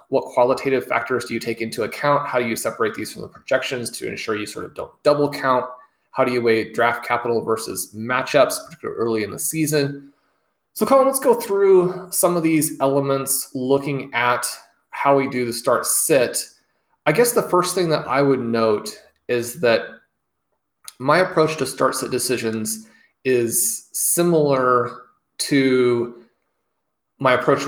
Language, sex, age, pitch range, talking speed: English, male, 20-39, 115-135 Hz, 165 wpm